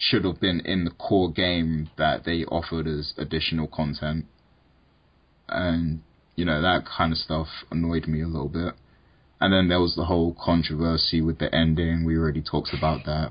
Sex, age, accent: male, 20-39, British